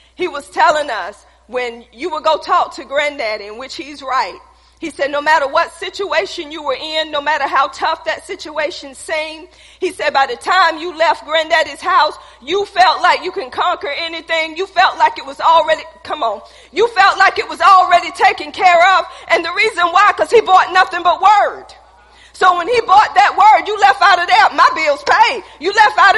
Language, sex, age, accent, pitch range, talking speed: English, female, 40-59, American, 320-440 Hz, 210 wpm